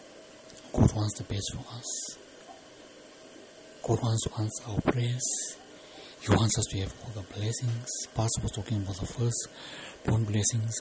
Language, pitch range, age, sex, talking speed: English, 105-120 Hz, 60-79, male, 145 wpm